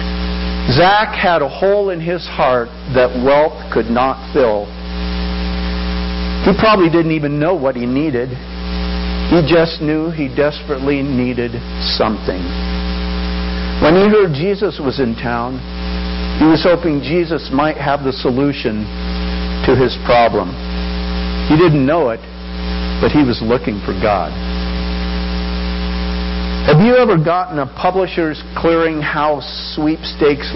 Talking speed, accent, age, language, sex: 125 wpm, American, 50-69, English, male